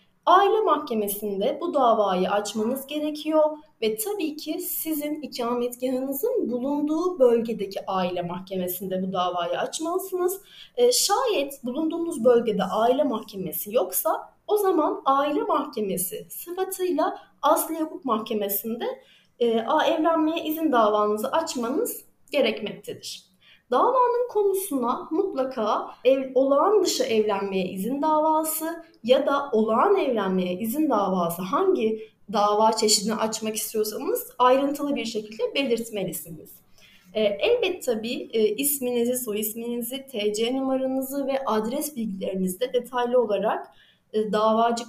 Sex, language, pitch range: female, Turkish, 215-310 Hz